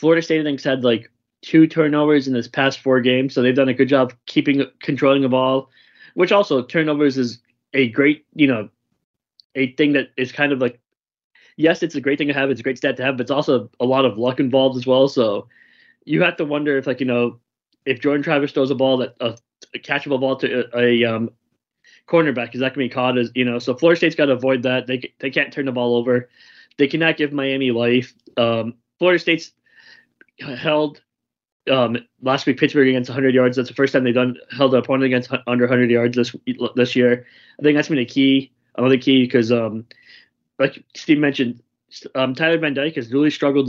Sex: male